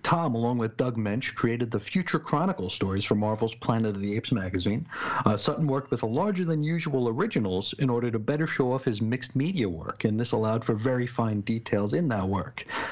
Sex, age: male, 50-69